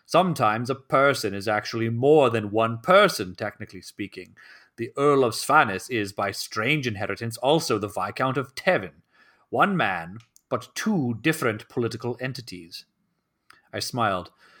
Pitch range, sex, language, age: 105-150 Hz, male, English, 30-49